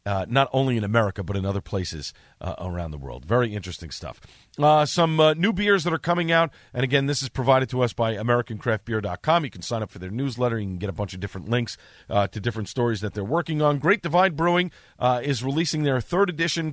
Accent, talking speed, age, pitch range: American, 235 wpm, 40-59, 115-155 Hz